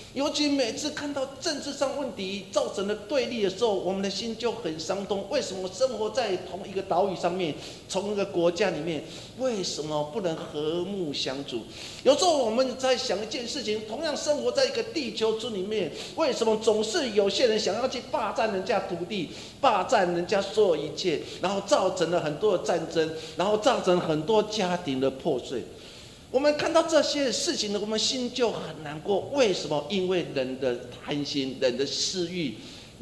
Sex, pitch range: male, 165-255 Hz